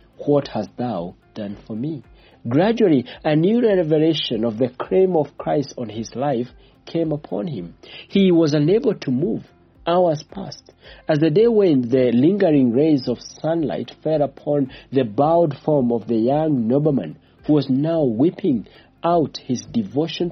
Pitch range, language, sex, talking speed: 120-165 Hz, English, male, 155 wpm